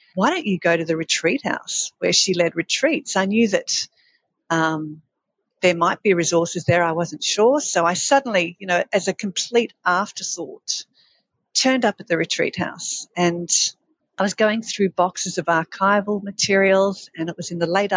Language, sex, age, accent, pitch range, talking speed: English, female, 50-69, Australian, 170-210 Hz, 180 wpm